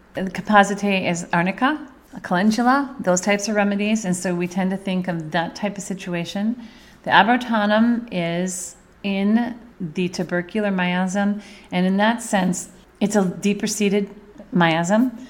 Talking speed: 140 wpm